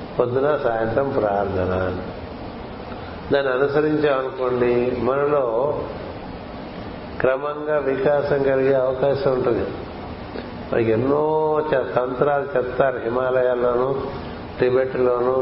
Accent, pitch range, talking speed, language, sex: native, 125-145 Hz, 65 wpm, Telugu, male